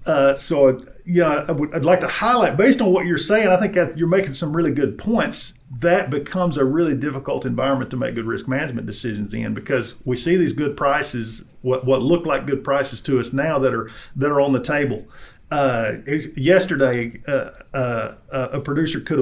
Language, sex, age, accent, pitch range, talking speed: English, male, 40-59, American, 130-170 Hz, 205 wpm